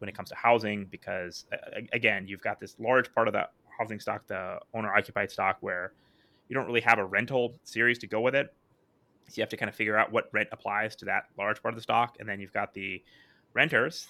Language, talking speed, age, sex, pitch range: English, 240 wpm, 20-39, male, 100-120 Hz